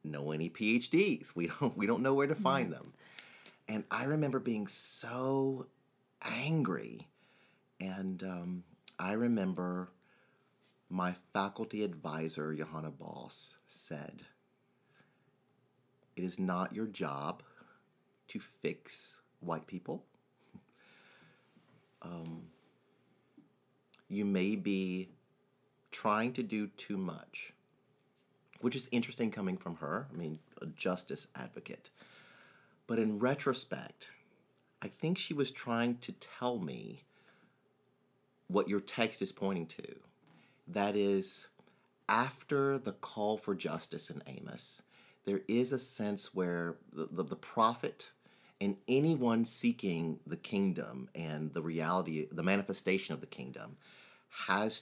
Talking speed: 115 wpm